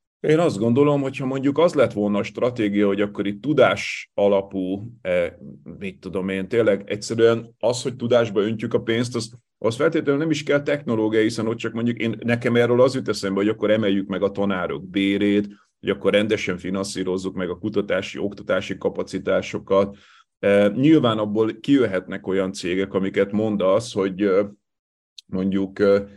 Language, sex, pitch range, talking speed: Hungarian, male, 100-120 Hz, 155 wpm